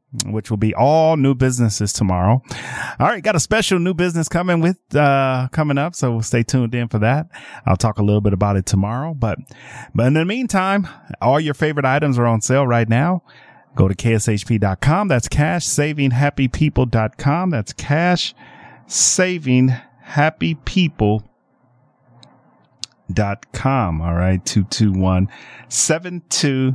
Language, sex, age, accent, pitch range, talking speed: English, male, 40-59, American, 100-140 Hz, 155 wpm